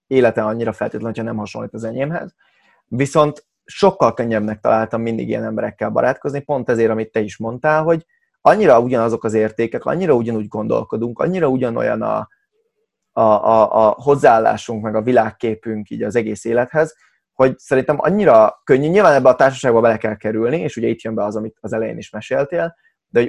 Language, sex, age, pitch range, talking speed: Hungarian, male, 30-49, 110-135 Hz, 175 wpm